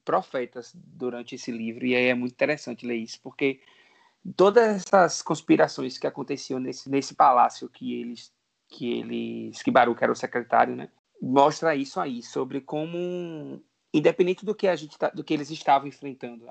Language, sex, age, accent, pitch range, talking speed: Portuguese, male, 20-39, Brazilian, 125-180 Hz, 165 wpm